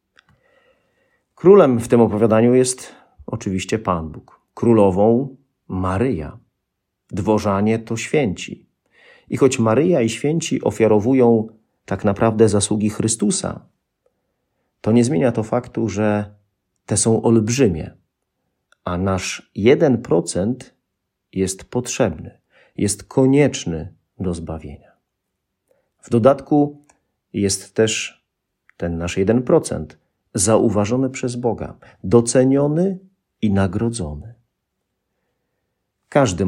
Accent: native